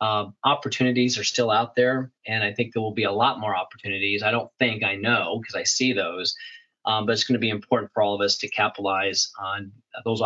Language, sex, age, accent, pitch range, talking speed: English, male, 30-49, American, 100-120 Hz, 235 wpm